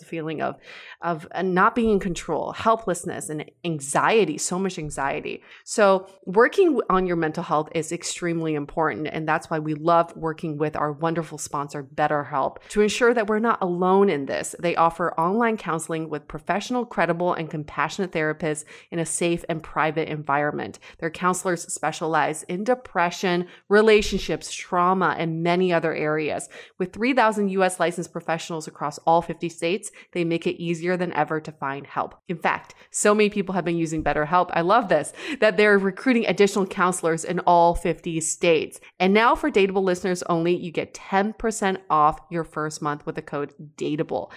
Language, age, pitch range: English, 30-49, 155-195 Hz